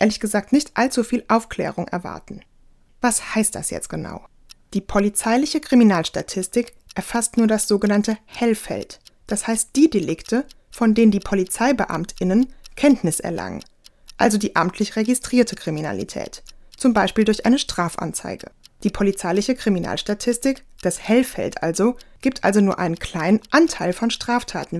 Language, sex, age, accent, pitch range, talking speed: German, female, 20-39, German, 190-245 Hz, 130 wpm